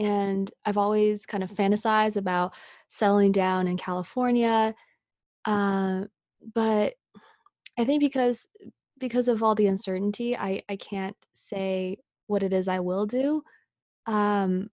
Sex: female